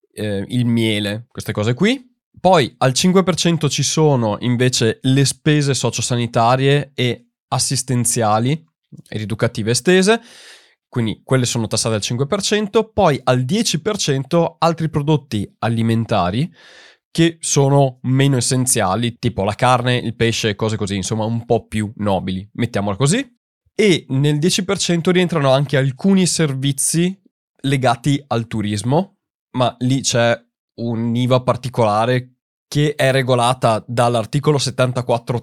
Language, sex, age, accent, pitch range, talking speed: Italian, male, 20-39, native, 115-150 Hz, 120 wpm